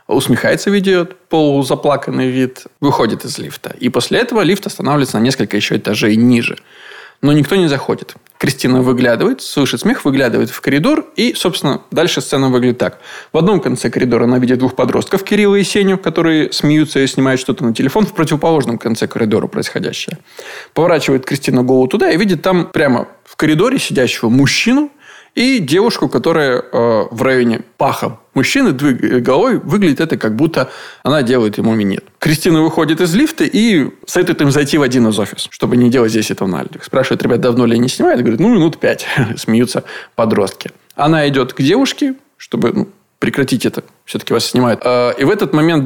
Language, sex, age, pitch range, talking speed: Russian, male, 20-39, 125-175 Hz, 175 wpm